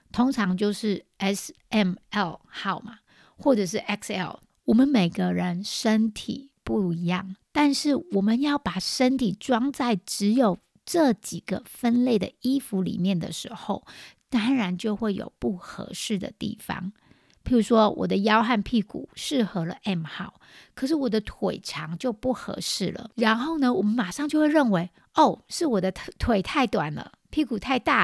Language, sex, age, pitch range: Chinese, female, 50-69, 190-250 Hz